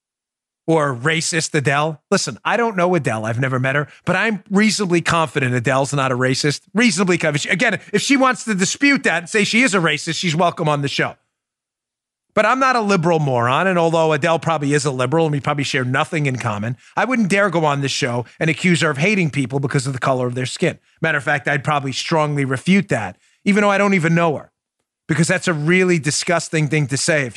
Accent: American